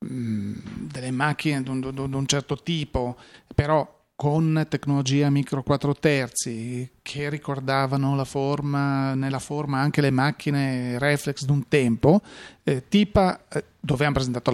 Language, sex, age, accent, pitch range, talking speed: Italian, male, 40-59, native, 135-165 Hz, 130 wpm